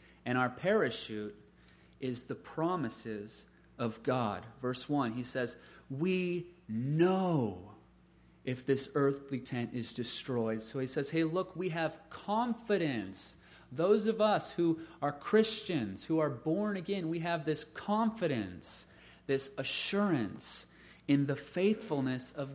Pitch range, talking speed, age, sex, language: 120-170 Hz, 130 wpm, 30-49, male, English